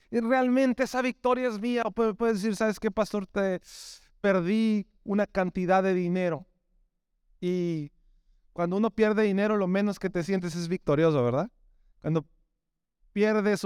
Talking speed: 145 wpm